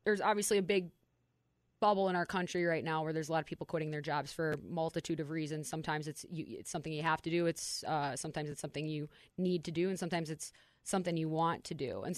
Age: 20-39